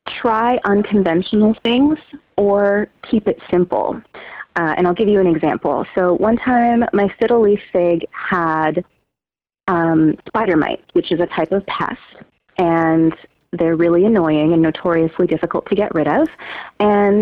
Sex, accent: female, American